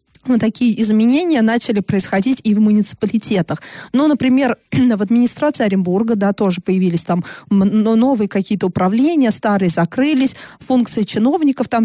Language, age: Russian, 20-39